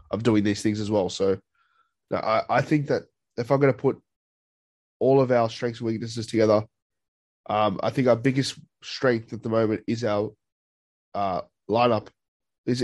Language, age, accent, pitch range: English, 20-39, Australian, 110-130 Hz